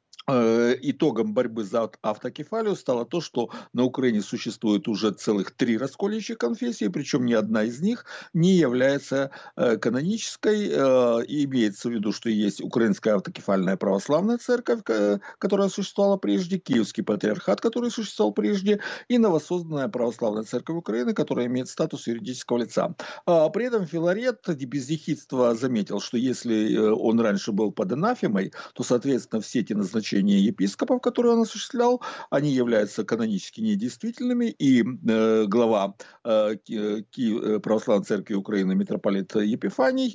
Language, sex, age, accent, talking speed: Russian, male, 50-69, native, 125 wpm